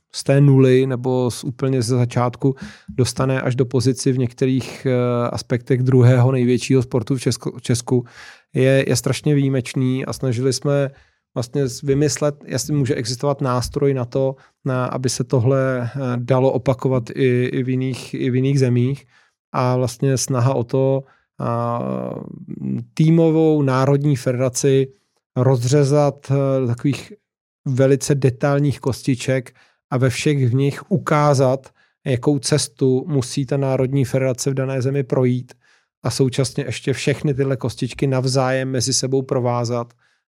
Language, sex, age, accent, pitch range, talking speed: Czech, male, 40-59, native, 125-135 Hz, 140 wpm